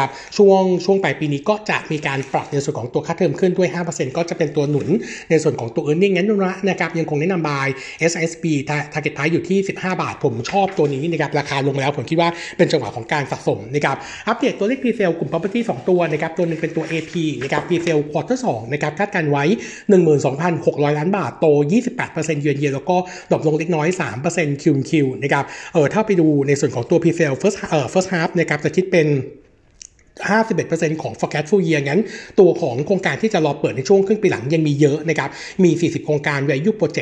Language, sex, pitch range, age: Thai, male, 150-185 Hz, 60-79